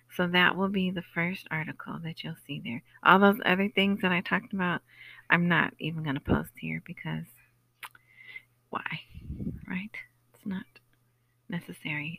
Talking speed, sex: 160 wpm, female